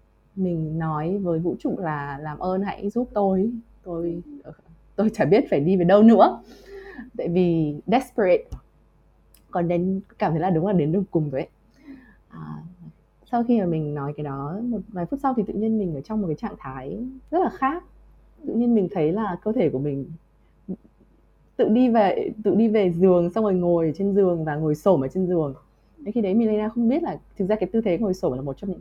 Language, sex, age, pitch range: Vietnamese, female, 20-39, 155-220 Hz